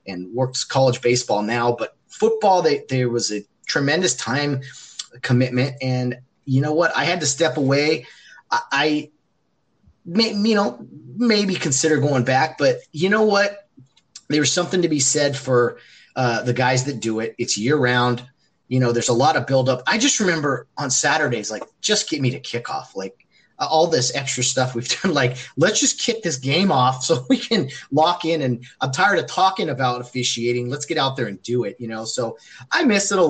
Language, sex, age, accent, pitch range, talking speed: English, male, 30-49, American, 125-165 Hz, 200 wpm